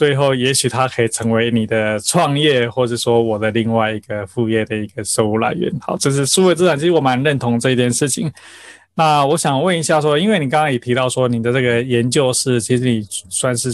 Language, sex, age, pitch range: Chinese, male, 20-39, 120-145 Hz